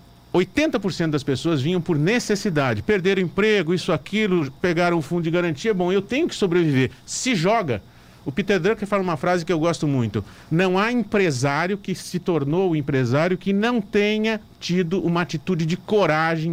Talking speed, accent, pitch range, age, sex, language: 180 wpm, Brazilian, 140-185 Hz, 50-69, male, Portuguese